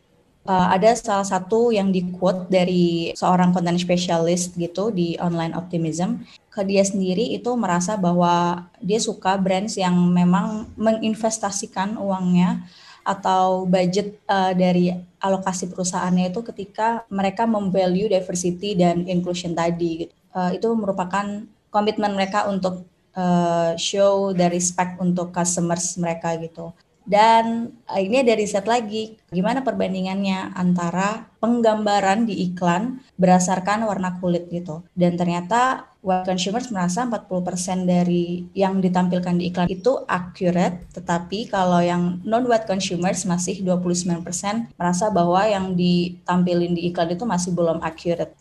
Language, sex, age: English, female, 20-39